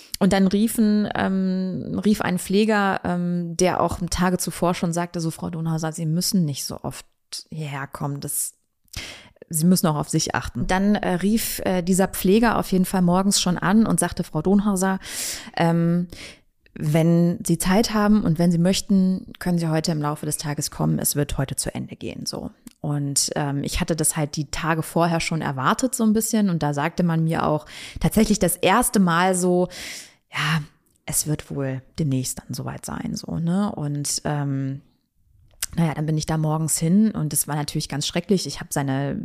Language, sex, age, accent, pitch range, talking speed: German, female, 20-39, German, 155-185 Hz, 190 wpm